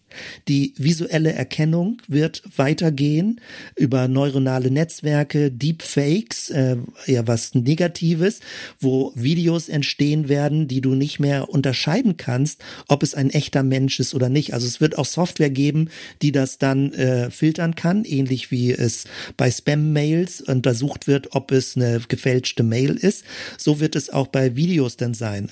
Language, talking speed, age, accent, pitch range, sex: German, 150 wpm, 50-69, German, 130-160 Hz, male